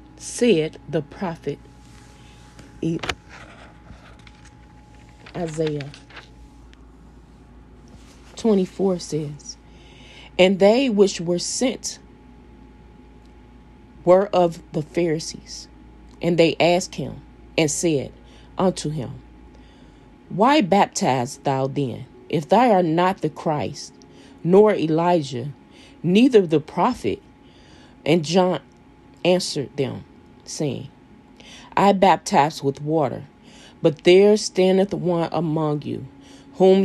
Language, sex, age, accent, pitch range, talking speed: English, female, 30-49, American, 140-185 Hz, 90 wpm